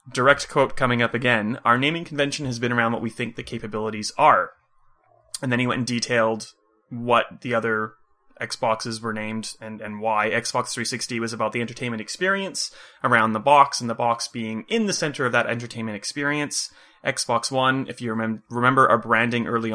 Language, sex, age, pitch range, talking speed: English, male, 30-49, 110-125 Hz, 190 wpm